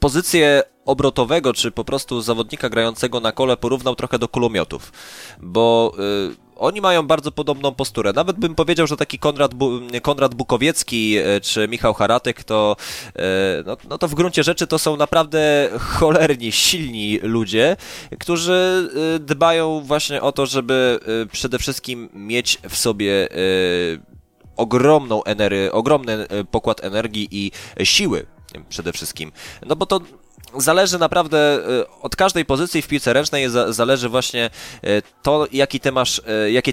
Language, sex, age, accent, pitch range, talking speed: Polish, male, 20-39, native, 110-145 Hz, 120 wpm